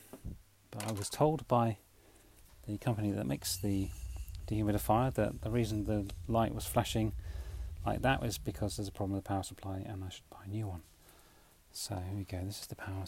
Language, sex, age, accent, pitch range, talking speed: English, male, 40-59, British, 100-130 Hz, 200 wpm